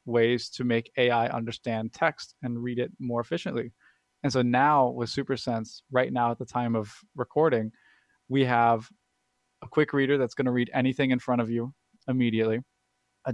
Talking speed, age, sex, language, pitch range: 175 wpm, 20-39, male, English, 115-125 Hz